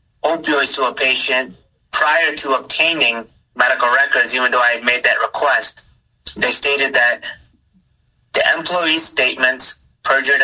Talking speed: 130 wpm